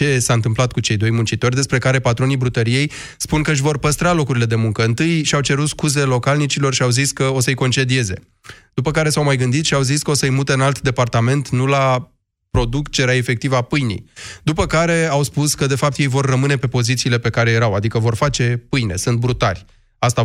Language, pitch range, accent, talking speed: Romanian, 115-140 Hz, native, 215 wpm